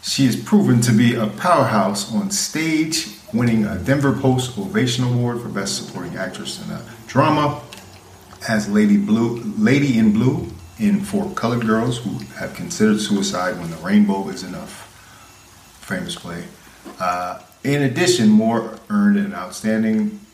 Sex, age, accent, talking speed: male, 40-59, American, 145 wpm